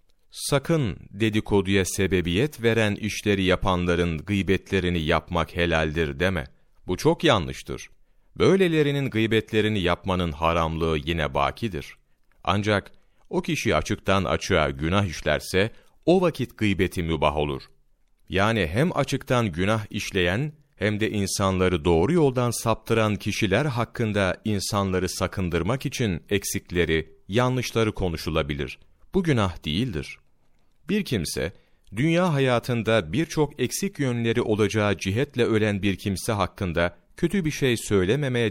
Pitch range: 90-125 Hz